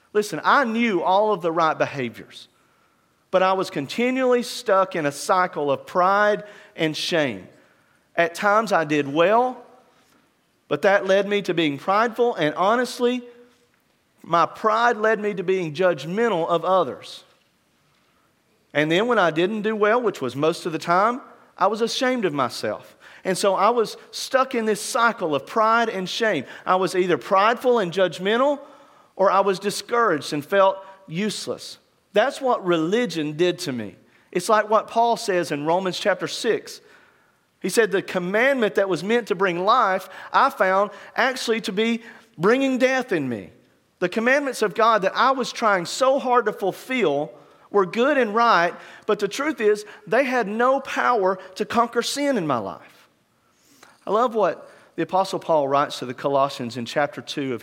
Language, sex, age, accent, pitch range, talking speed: English, male, 40-59, American, 170-235 Hz, 170 wpm